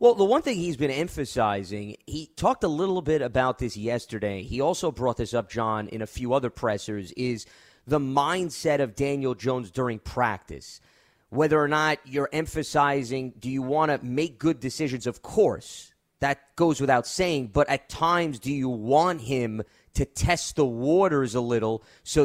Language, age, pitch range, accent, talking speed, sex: English, 30-49, 125-155 Hz, American, 180 wpm, male